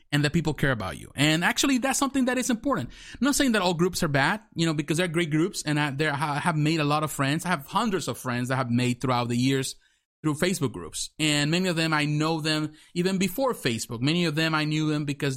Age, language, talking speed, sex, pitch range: 30-49, English, 260 wpm, male, 145-195 Hz